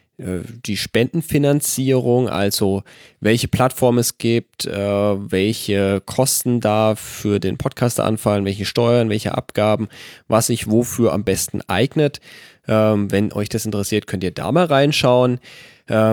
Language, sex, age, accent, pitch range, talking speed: German, male, 20-39, German, 105-135 Hz, 125 wpm